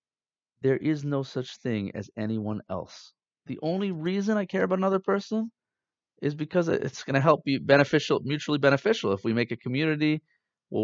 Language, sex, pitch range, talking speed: English, male, 115-155 Hz, 175 wpm